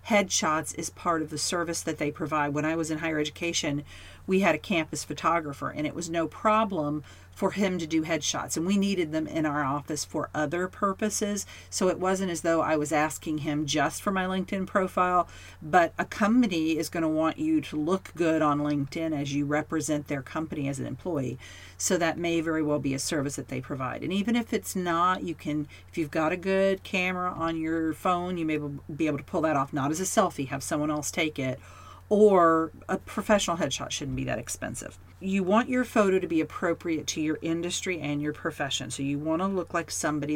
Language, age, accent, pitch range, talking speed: English, 40-59, American, 150-180 Hz, 215 wpm